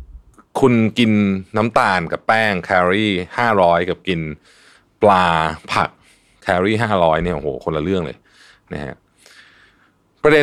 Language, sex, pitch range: Thai, male, 80-110 Hz